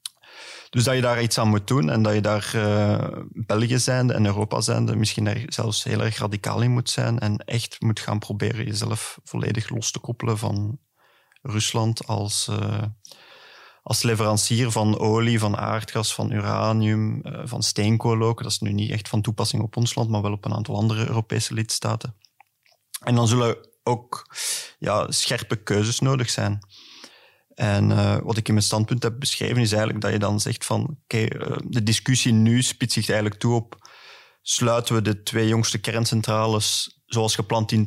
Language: Dutch